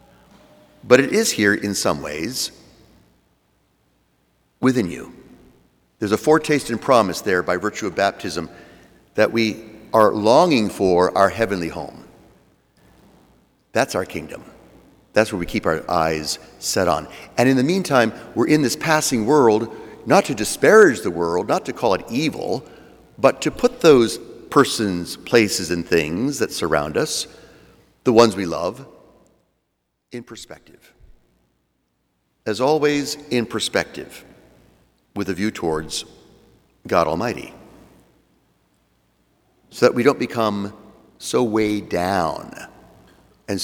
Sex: male